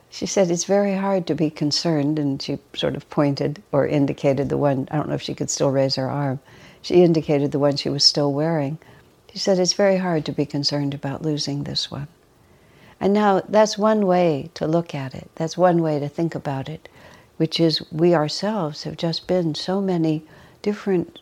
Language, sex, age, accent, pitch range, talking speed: English, female, 60-79, American, 150-195 Hz, 205 wpm